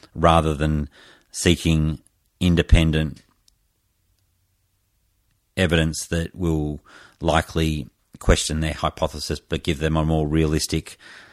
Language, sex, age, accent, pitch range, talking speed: English, male, 40-59, Australian, 80-95 Hz, 90 wpm